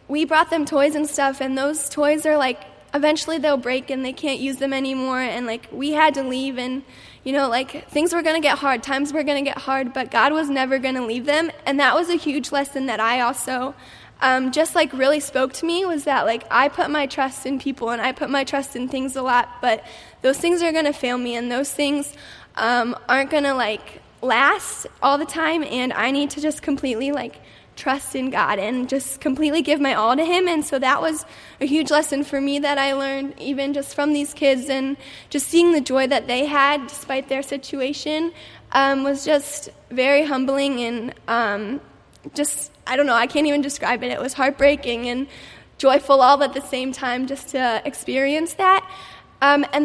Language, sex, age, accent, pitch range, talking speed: English, female, 10-29, American, 260-295 Hz, 220 wpm